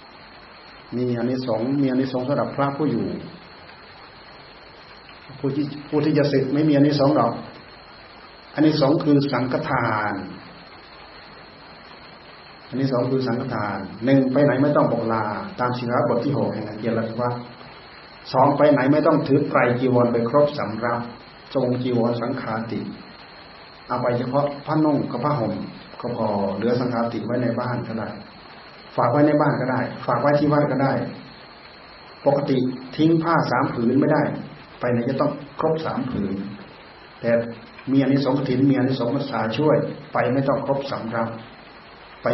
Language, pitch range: Thai, 115-140 Hz